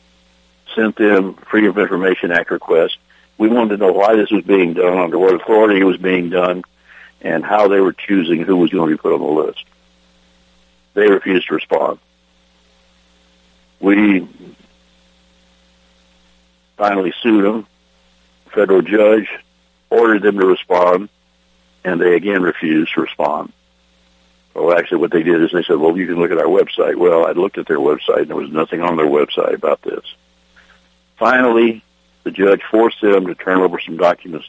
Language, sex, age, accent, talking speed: English, male, 60-79, American, 170 wpm